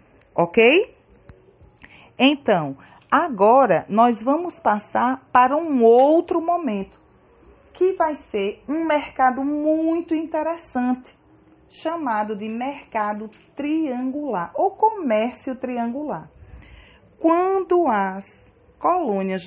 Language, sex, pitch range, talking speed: English, female, 190-295 Hz, 85 wpm